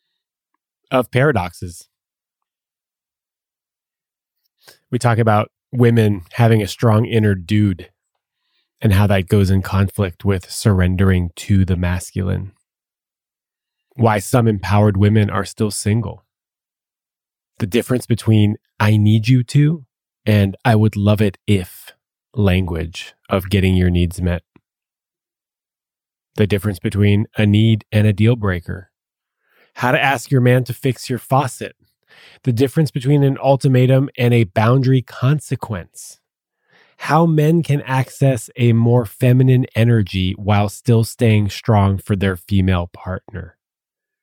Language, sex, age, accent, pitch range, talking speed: English, male, 20-39, American, 95-125 Hz, 125 wpm